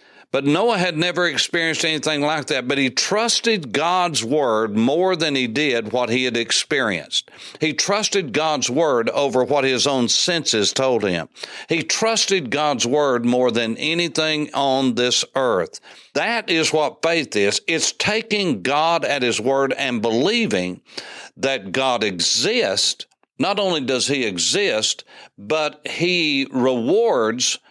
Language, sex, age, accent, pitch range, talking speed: English, male, 60-79, American, 130-175 Hz, 145 wpm